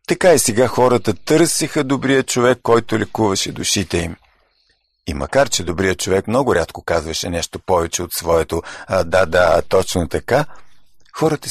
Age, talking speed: 50-69, 150 wpm